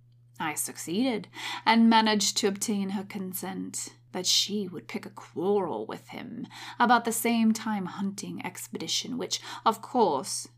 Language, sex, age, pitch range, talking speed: English, female, 20-39, 145-210 Hz, 140 wpm